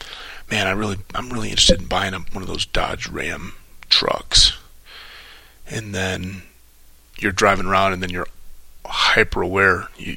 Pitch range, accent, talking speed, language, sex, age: 90-105 Hz, American, 155 wpm, English, male, 30-49